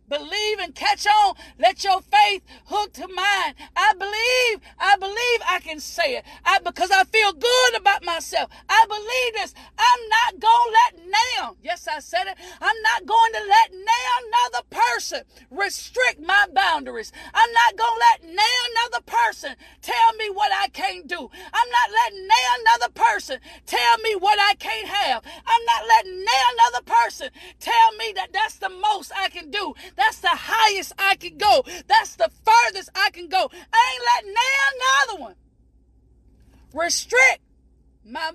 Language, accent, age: English, American, 40-59